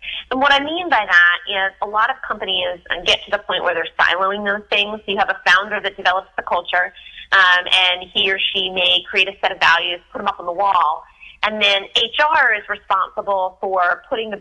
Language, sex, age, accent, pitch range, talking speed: English, female, 30-49, American, 180-225 Hz, 220 wpm